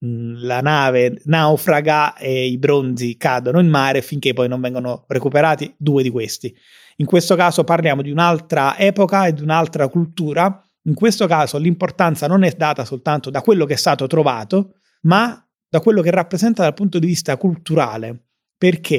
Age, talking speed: 30-49, 170 wpm